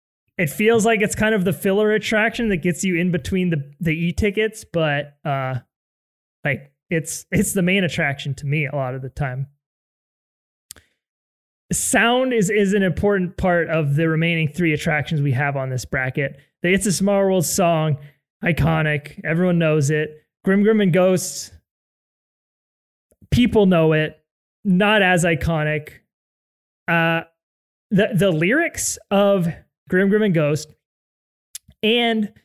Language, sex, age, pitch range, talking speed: English, male, 20-39, 145-190 Hz, 145 wpm